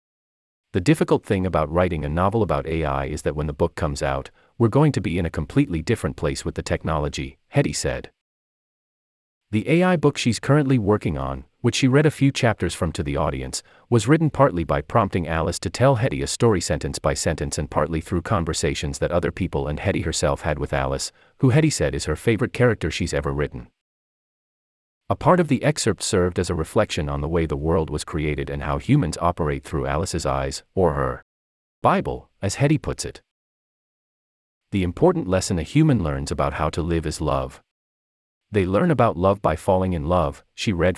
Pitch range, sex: 75-115 Hz, male